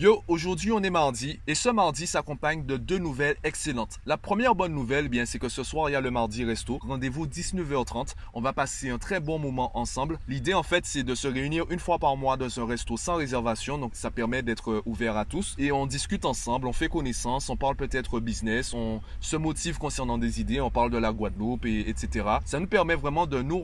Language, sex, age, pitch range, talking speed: French, male, 20-39, 120-170 Hz, 235 wpm